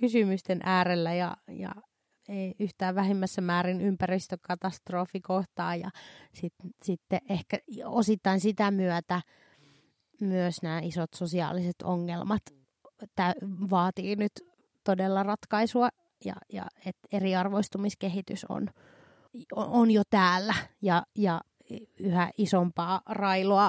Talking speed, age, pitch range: 95 wpm, 30-49, 180-220 Hz